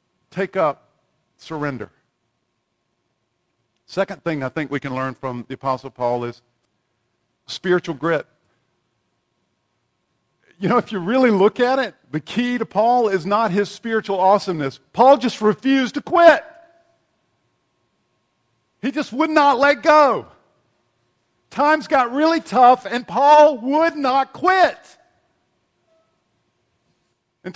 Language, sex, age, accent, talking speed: English, male, 50-69, American, 120 wpm